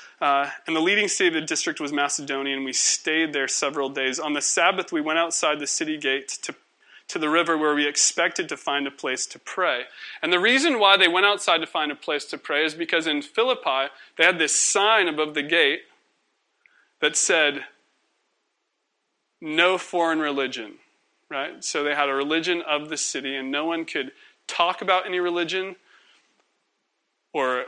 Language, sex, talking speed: English, male, 185 wpm